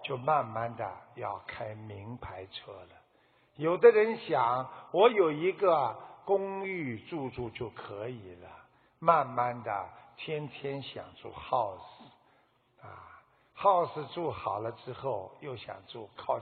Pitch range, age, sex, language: 120-180 Hz, 60-79, male, Chinese